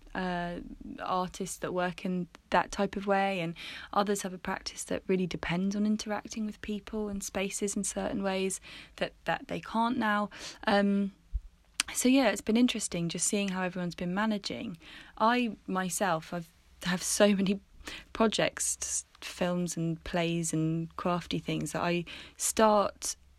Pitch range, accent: 165-205 Hz, British